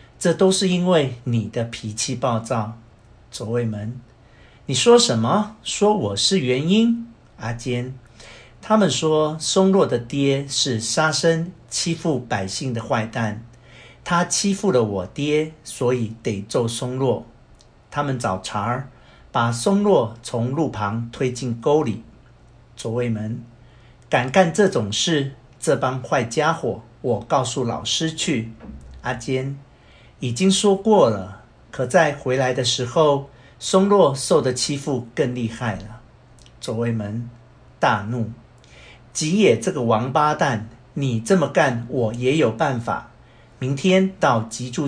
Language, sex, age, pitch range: Chinese, male, 50-69, 115-155 Hz